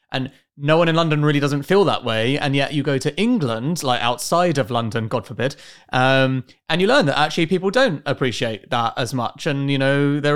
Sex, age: male, 30-49